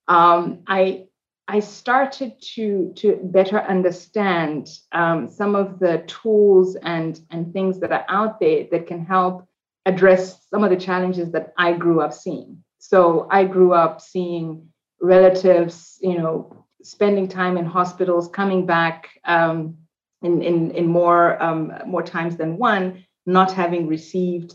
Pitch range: 165-190 Hz